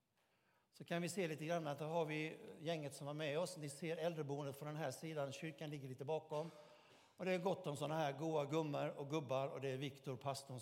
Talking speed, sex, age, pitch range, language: 235 wpm, male, 60-79, 130-165 Hz, Swedish